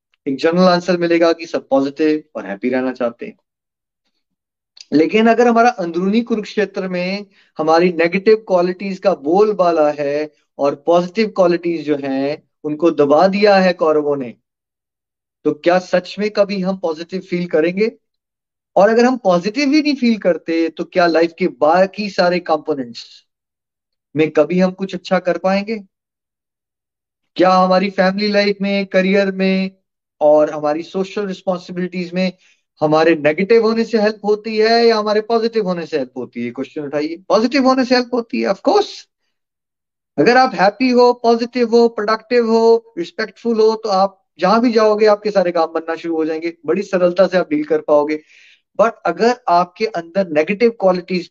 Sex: male